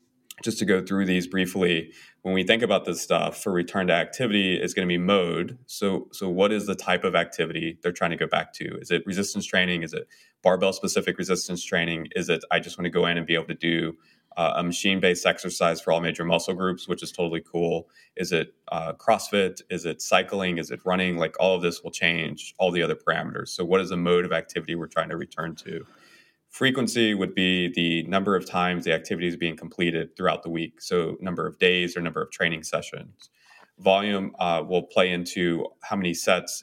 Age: 20-39